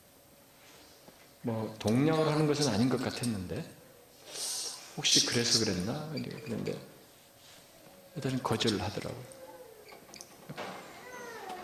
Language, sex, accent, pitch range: Korean, male, native, 110-145 Hz